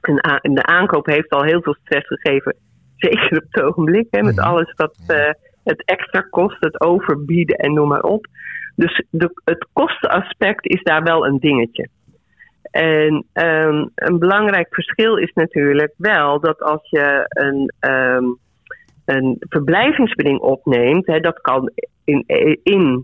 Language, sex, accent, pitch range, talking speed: Dutch, female, Dutch, 140-170 Hz, 135 wpm